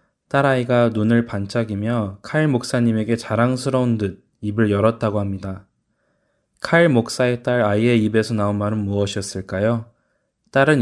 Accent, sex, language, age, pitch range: native, male, Korean, 20-39, 100-125 Hz